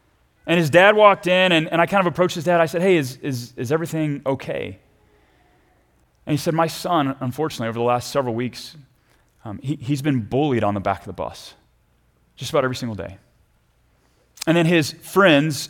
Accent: American